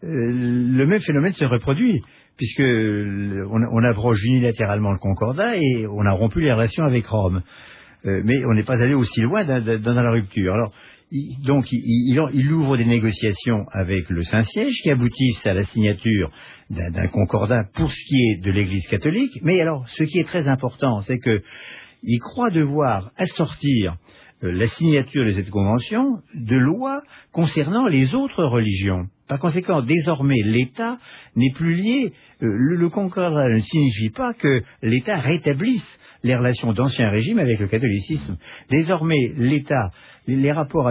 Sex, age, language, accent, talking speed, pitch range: male, 60-79, French, French, 160 wpm, 110-155 Hz